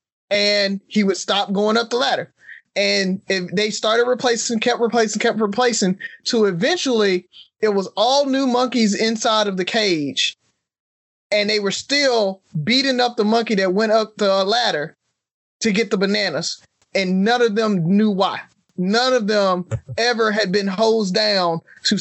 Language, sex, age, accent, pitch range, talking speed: English, male, 20-39, American, 190-230 Hz, 165 wpm